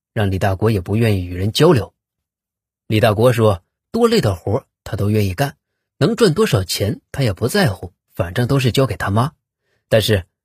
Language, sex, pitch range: Chinese, male, 105-145 Hz